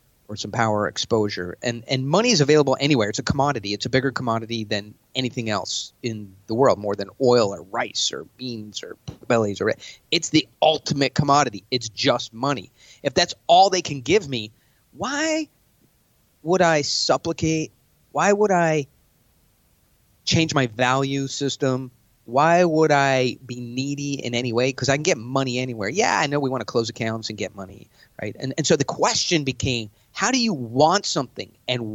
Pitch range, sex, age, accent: 115-145 Hz, male, 30-49, American